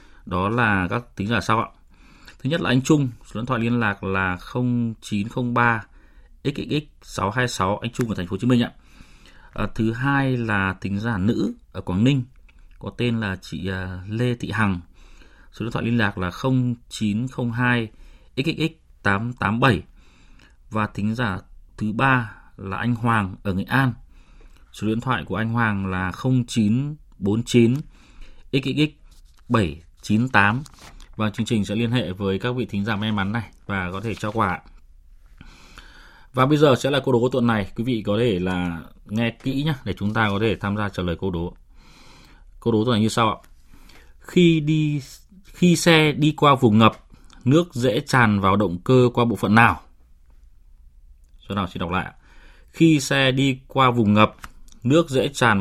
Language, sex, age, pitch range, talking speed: Vietnamese, male, 20-39, 95-125 Hz, 175 wpm